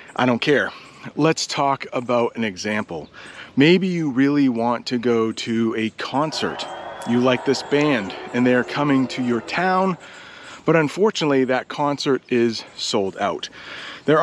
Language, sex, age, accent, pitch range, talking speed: English, male, 30-49, American, 125-160 Hz, 150 wpm